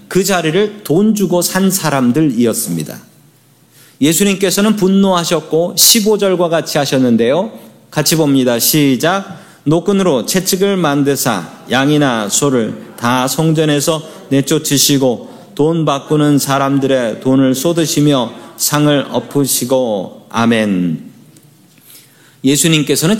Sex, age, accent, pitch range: male, 40-59, native, 135-180 Hz